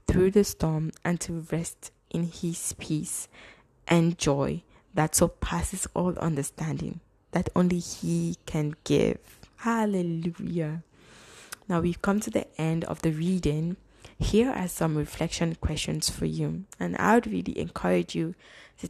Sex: female